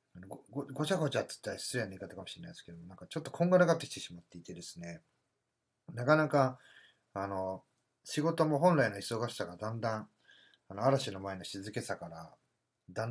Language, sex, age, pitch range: Japanese, male, 30-49, 100-140 Hz